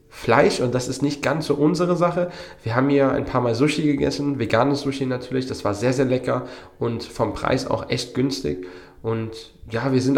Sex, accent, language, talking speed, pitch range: male, German, German, 205 wpm, 110-135 Hz